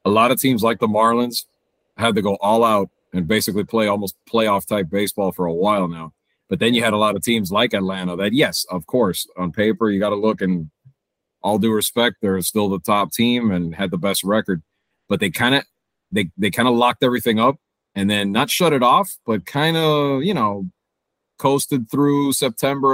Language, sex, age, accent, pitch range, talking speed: English, male, 30-49, American, 95-120 Hz, 205 wpm